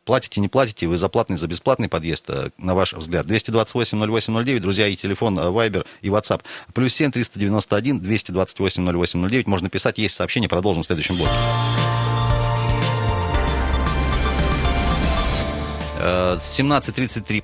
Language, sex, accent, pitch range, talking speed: Russian, male, native, 90-115 Hz, 120 wpm